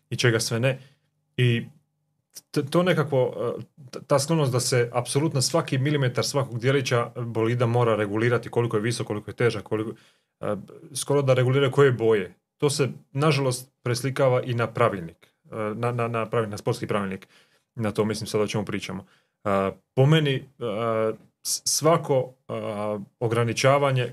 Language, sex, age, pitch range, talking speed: Croatian, male, 30-49, 115-135 Hz, 135 wpm